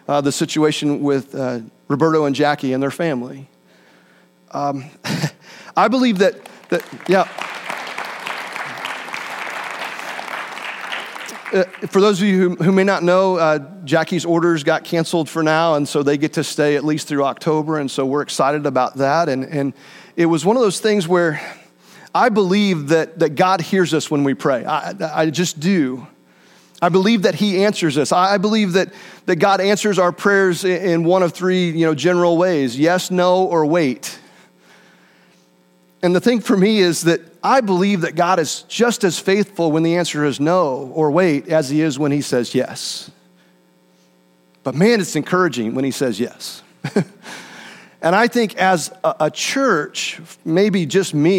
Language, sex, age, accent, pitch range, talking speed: English, male, 40-59, American, 140-185 Hz, 170 wpm